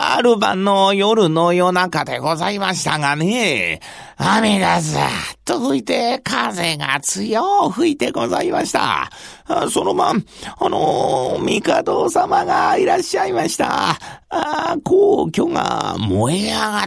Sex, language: male, Japanese